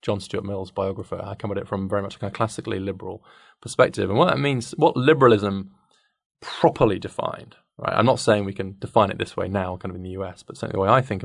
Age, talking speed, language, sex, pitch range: 20-39, 255 wpm, English, male, 95-120 Hz